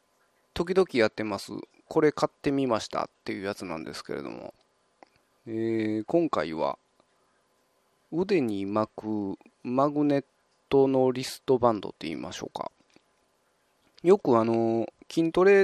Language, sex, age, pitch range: Japanese, male, 20-39, 115-165 Hz